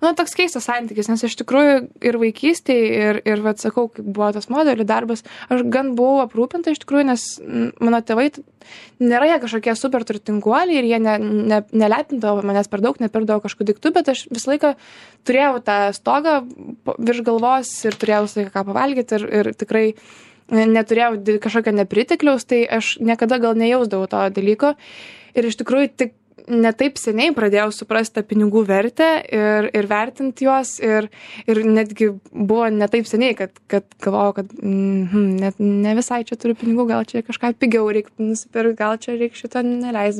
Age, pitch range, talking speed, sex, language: 20-39, 205-240 Hz, 165 wpm, female, English